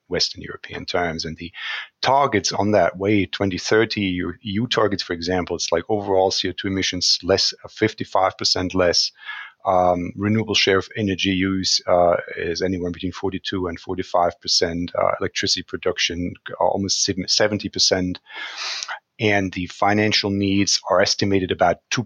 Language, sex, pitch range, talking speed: English, male, 90-105 Hz, 130 wpm